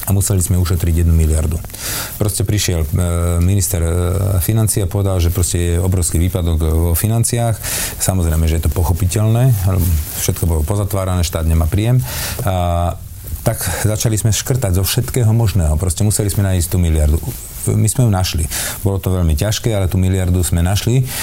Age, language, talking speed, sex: 40-59, Slovak, 160 wpm, male